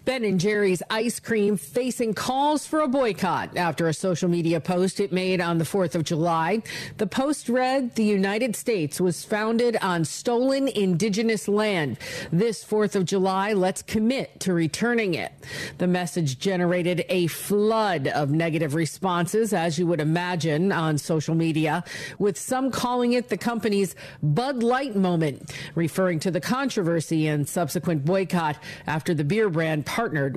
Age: 40-59